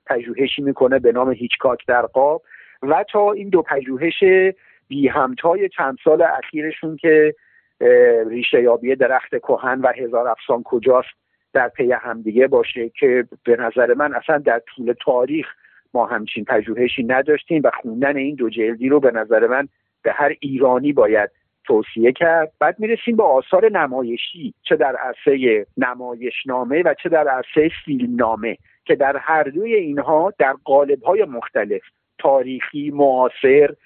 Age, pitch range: 50-69, 130-200 Hz